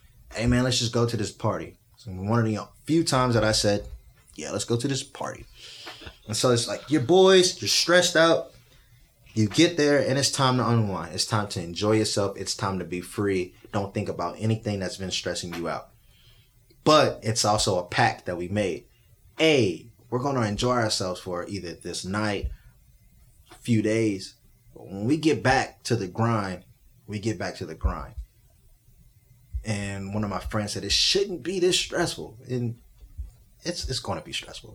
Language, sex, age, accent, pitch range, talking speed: English, male, 20-39, American, 100-125 Hz, 190 wpm